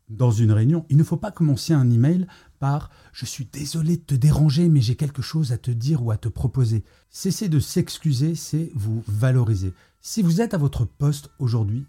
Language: French